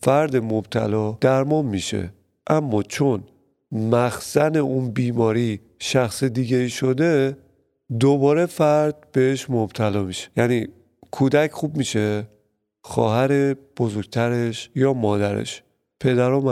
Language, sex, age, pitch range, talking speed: Persian, male, 40-59, 110-140 Hz, 100 wpm